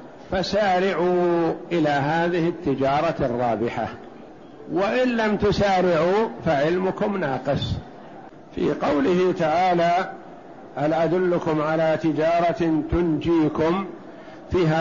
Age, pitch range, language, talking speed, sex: 60-79, 155-185 Hz, Arabic, 75 wpm, male